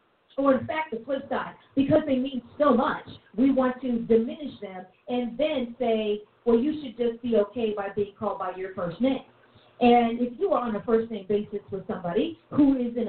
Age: 40-59